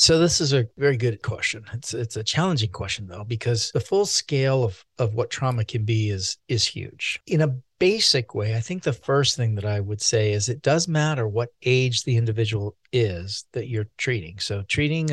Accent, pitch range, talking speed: American, 110-150 Hz, 210 wpm